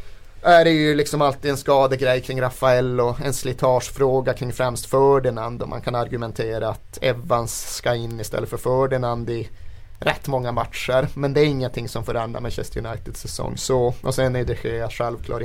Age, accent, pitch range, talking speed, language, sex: 30-49, native, 115-140 Hz, 175 wpm, Swedish, male